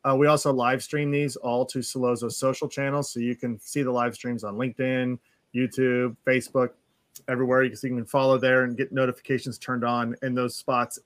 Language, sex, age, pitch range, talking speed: English, male, 30-49, 125-145 Hz, 205 wpm